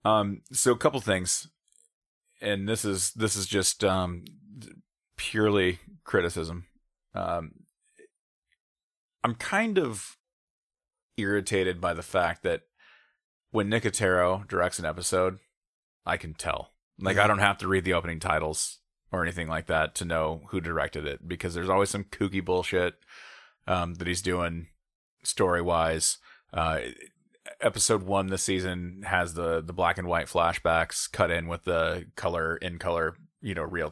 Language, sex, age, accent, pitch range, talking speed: English, male, 30-49, American, 85-110 Hz, 145 wpm